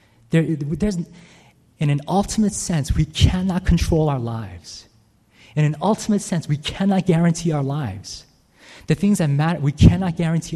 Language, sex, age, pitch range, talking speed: English, male, 30-49, 110-160 Hz, 140 wpm